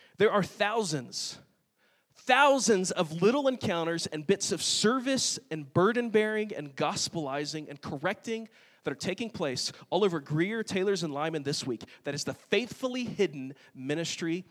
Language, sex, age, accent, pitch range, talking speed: English, male, 30-49, American, 145-215 Hz, 145 wpm